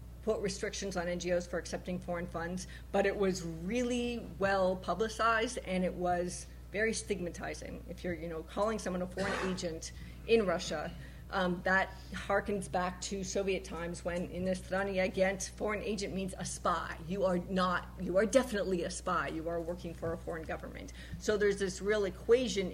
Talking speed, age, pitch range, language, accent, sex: 175 wpm, 40-59, 175-195 Hz, English, American, female